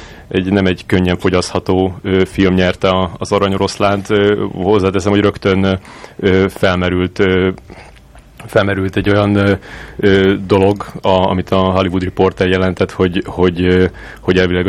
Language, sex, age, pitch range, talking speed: Hungarian, male, 30-49, 85-95 Hz, 110 wpm